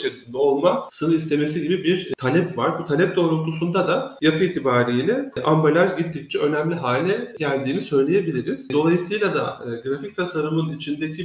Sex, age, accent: male, 40-59, native